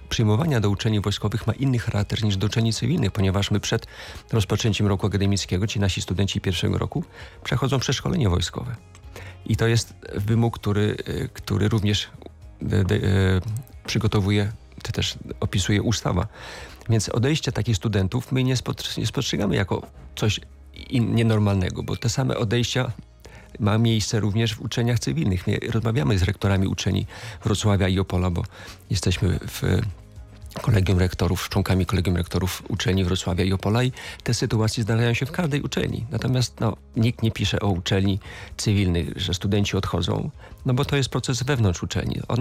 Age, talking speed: 40-59, 155 wpm